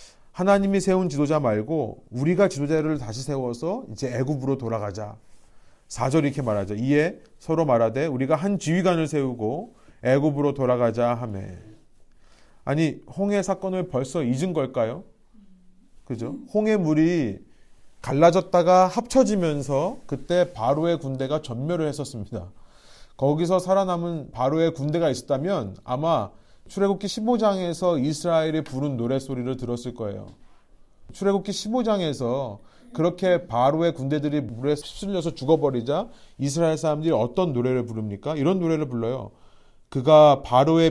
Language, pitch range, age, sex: Korean, 125-175 Hz, 30-49, male